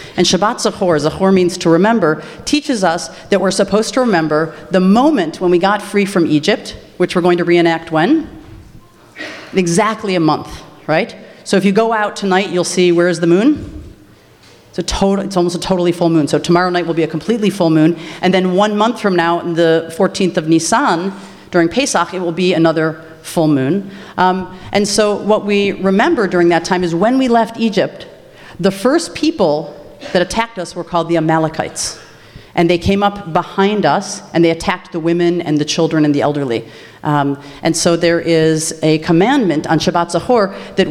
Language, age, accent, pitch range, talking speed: English, 40-59, American, 165-200 Hz, 195 wpm